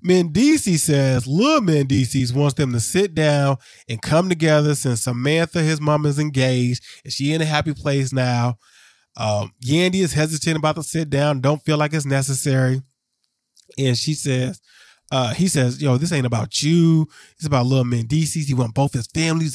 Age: 20-39